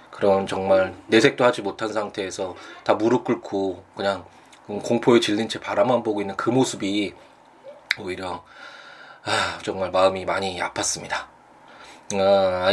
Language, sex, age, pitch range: Korean, male, 20-39, 95-125 Hz